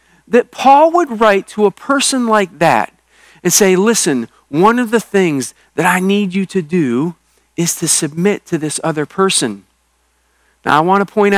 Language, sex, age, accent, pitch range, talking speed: English, male, 40-59, American, 145-205 Hz, 180 wpm